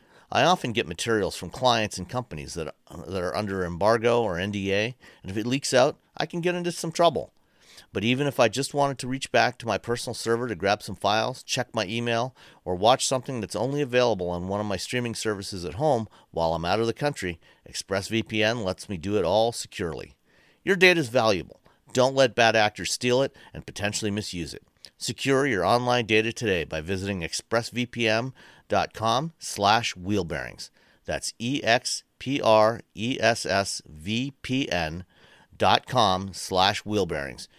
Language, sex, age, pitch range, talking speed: English, male, 40-59, 95-125 Hz, 170 wpm